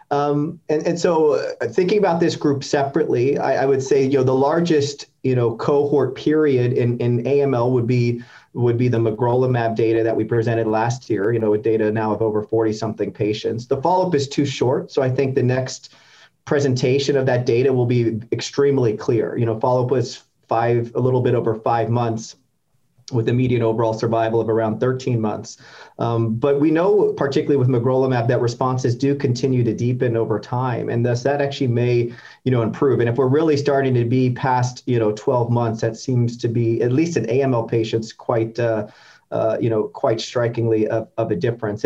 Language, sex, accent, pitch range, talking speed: English, male, American, 115-140 Hz, 205 wpm